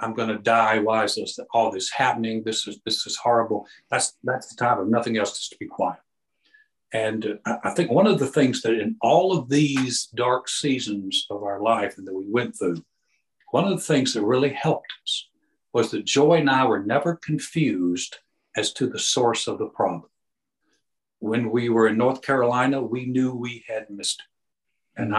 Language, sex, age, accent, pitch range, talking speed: English, male, 60-79, American, 110-135 Hz, 200 wpm